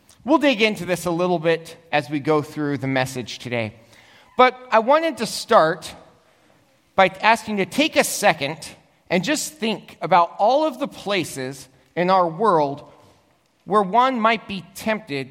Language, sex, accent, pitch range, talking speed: English, male, American, 155-220 Hz, 165 wpm